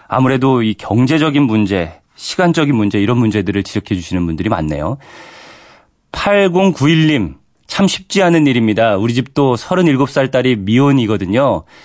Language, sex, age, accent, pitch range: Korean, male, 40-59, native, 105-145 Hz